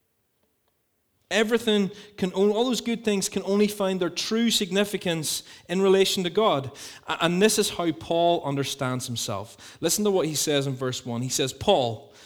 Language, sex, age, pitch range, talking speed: English, male, 30-49, 135-195 Hz, 170 wpm